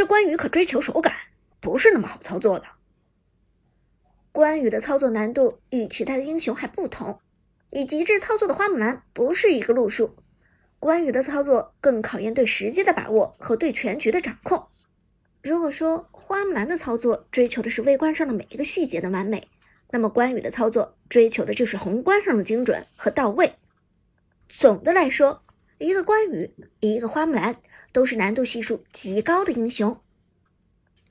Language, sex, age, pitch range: Chinese, male, 50-69, 225-330 Hz